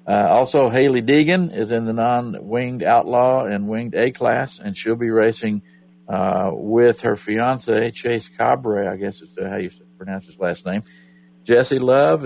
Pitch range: 95-120 Hz